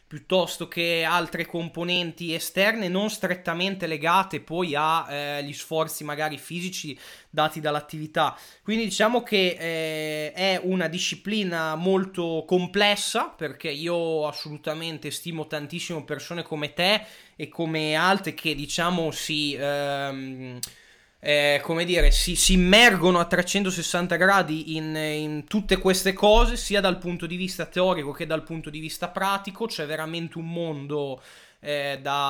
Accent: native